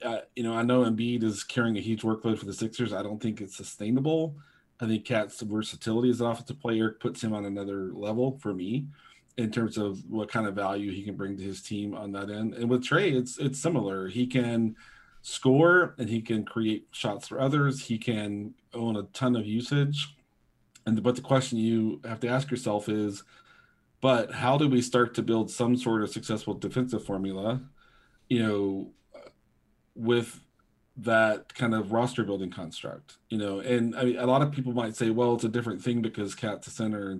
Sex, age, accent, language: male, 30-49, American, English